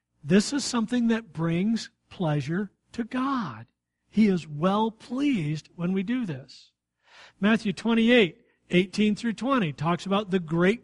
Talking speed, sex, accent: 140 wpm, male, American